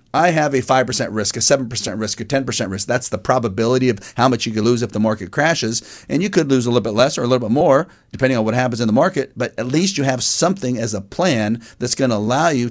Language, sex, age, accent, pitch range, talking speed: English, male, 40-59, American, 110-135 Hz, 270 wpm